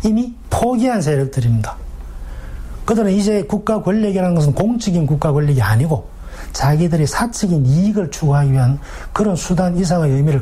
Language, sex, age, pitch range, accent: Korean, male, 40-59, 125-170 Hz, native